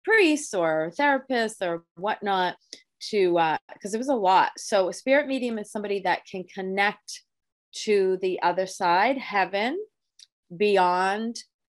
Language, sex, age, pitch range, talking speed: English, female, 30-49, 170-215 Hz, 140 wpm